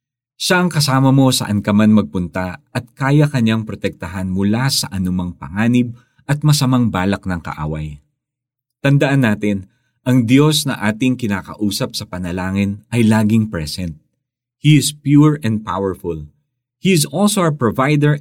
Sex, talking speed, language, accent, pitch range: male, 140 wpm, Filipino, native, 100-135 Hz